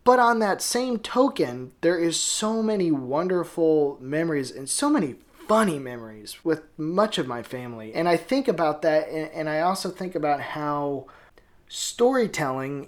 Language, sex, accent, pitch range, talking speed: English, male, American, 130-170 Hz, 155 wpm